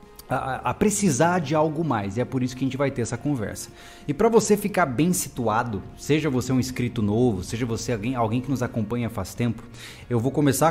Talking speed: 225 wpm